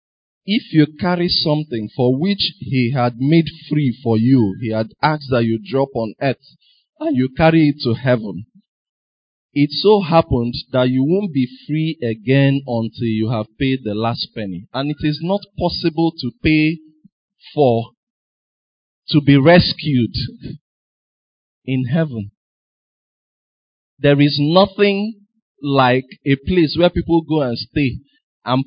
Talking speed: 140 wpm